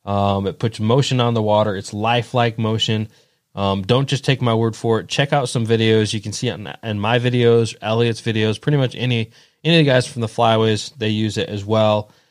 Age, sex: 20-39, male